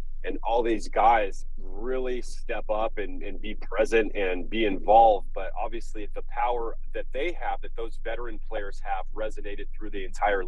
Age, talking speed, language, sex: 30-49, 170 wpm, English, male